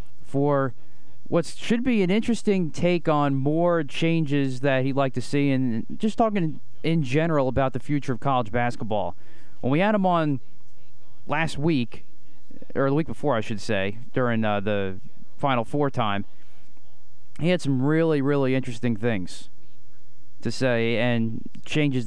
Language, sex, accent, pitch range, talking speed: English, male, American, 120-150 Hz, 155 wpm